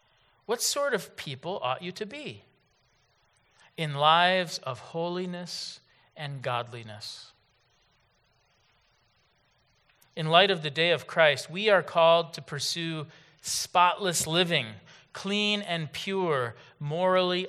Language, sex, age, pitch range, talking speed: English, male, 40-59, 125-175 Hz, 110 wpm